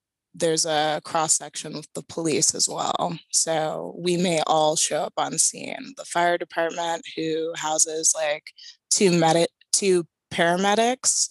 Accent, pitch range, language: American, 155-170 Hz, English